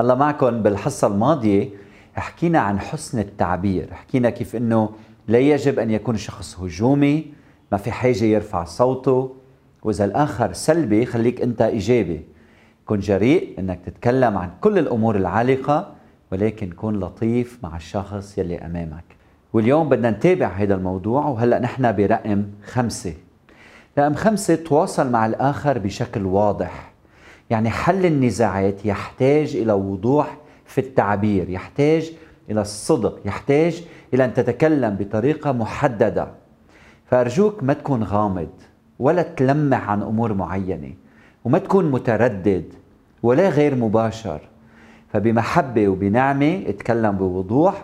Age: 40-59